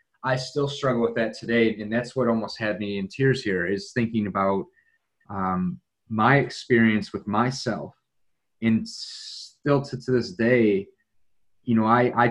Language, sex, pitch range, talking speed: English, male, 100-120 Hz, 160 wpm